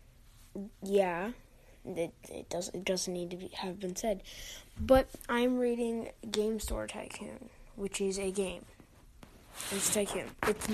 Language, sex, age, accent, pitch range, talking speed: English, female, 10-29, American, 170-215 Hz, 145 wpm